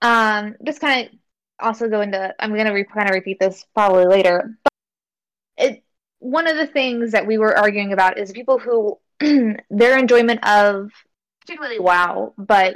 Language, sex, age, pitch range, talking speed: English, female, 20-39, 200-245 Hz, 170 wpm